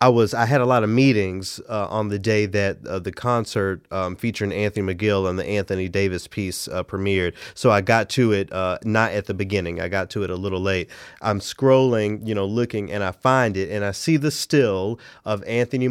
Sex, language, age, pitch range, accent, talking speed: male, English, 30-49, 100-120 Hz, American, 225 wpm